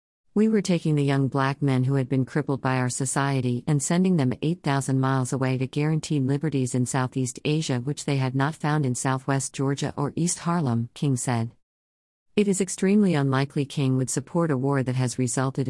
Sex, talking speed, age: female, 195 wpm, 50-69